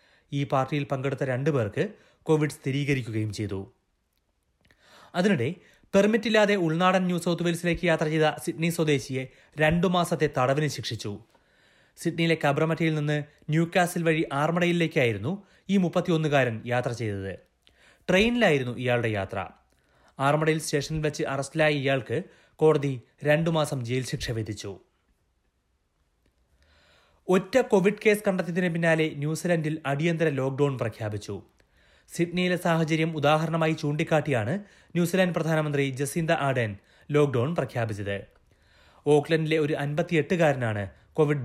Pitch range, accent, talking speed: 125-170 Hz, native, 100 wpm